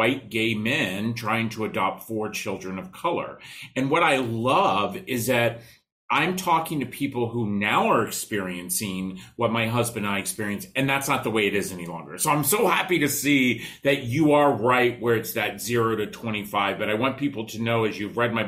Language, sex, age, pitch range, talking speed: English, male, 40-59, 105-130 Hz, 215 wpm